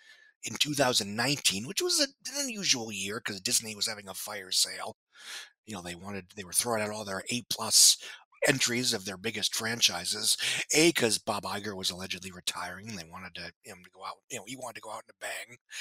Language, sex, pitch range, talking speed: English, male, 100-135 Hz, 215 wpm